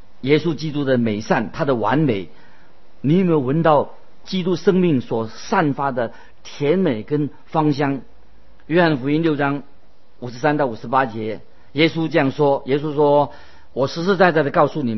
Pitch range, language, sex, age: 125-170 Hz, Chinese, male, 50-69